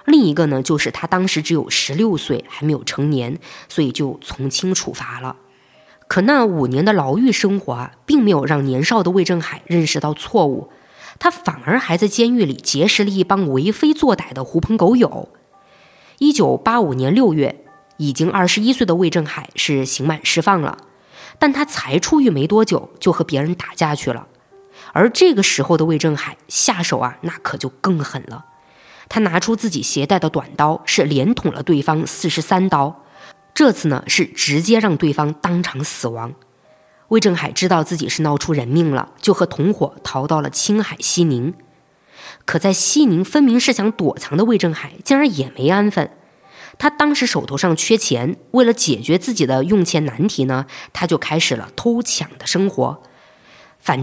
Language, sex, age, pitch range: Chinese, female, 20-39, 145-210 Hz